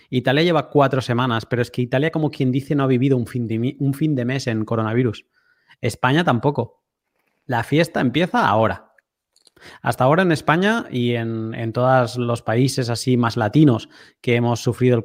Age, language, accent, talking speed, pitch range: 20-39, Spanish, Spanish, 175 wpm, 120-155 Hz